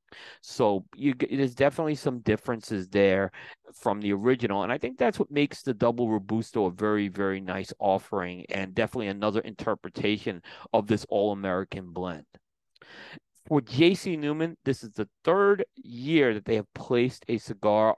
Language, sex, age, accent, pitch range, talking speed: English, male, 40-59, American, 105-145 Hz, 155 wpm